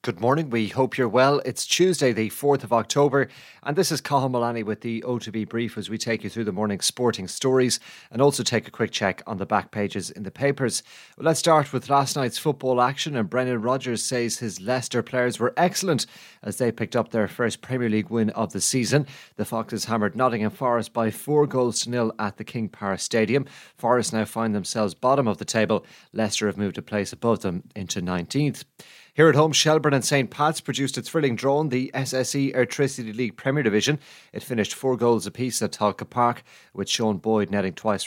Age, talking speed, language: 30-49, 210 wpm, English